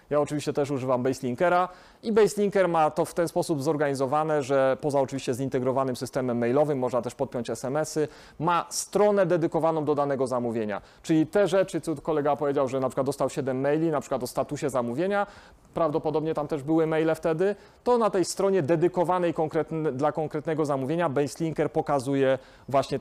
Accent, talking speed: native, 165 wpm